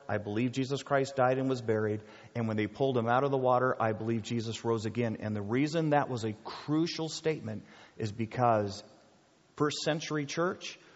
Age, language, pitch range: 40-59, English, 110-140 Hz